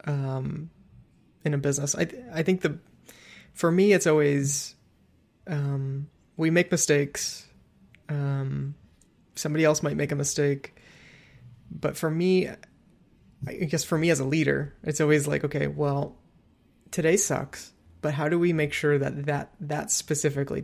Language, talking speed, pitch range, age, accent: English, 145 wpm, 140-160 Hz, 20-39, American